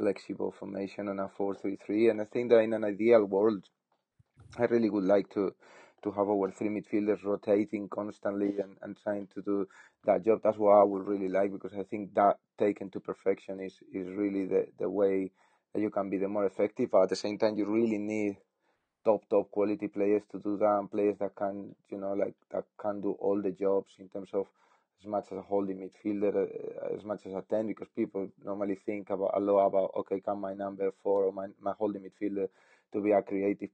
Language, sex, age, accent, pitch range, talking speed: English, male, 30-49, Spanish, 100-105 Hz, 220 wpm